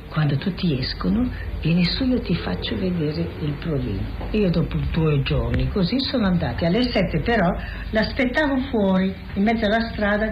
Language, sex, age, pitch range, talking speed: Italian, female, 50-69, 150-210 Hz, 155 wpm